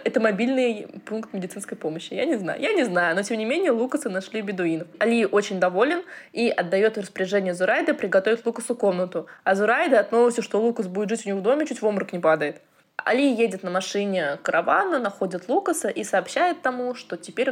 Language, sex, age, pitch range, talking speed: Russian, female, 20-39, 190-240 Hz, 195 wpm